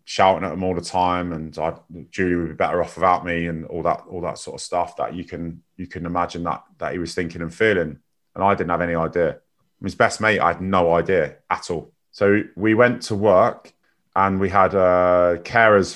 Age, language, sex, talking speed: 30-49, English, male, 230 wpm